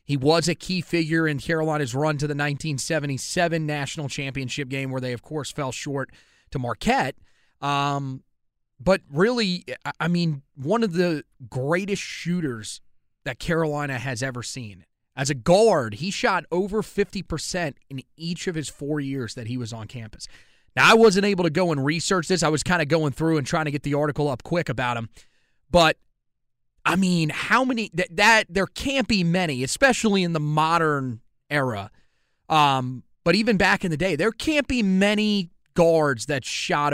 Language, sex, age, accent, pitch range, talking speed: English, male, 30-49, American, 130-175 Hz, 180 wpm